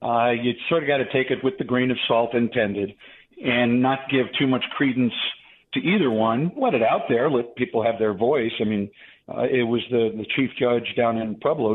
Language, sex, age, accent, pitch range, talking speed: English, male, 50-69, American, 115-155 Hz, 225 wpm